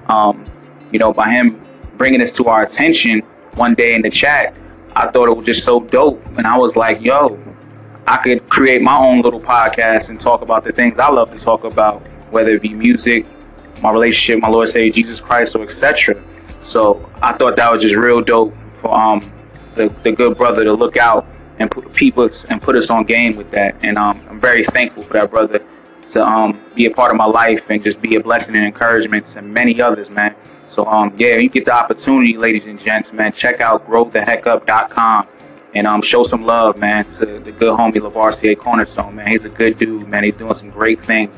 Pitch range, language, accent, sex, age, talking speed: 105-115 Hz, English, American, male, 20-39, 215 wpm